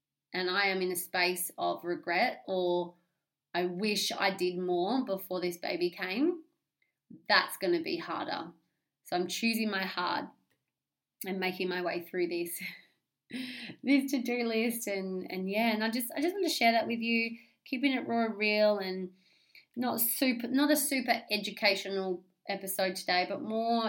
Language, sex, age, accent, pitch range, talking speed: English, female, 20-39, Australian, 180-235 Hz, 165 wpm